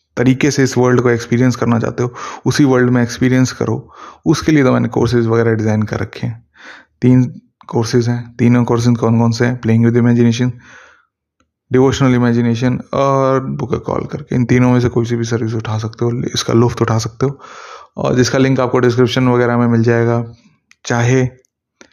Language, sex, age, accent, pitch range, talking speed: Hindi, male, 20-39, native, 115-125 Hz, 190 wpm